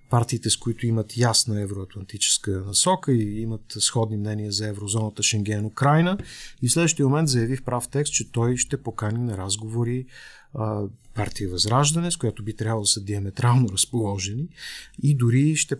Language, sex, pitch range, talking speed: Bulgarian, male, 110-135 Hz, 160 wpm